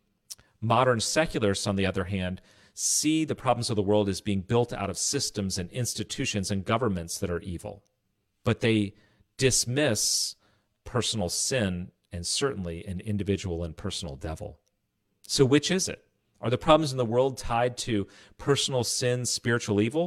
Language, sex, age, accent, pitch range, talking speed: English, male, 40-59, American, 100-115 Hz, 160 wpm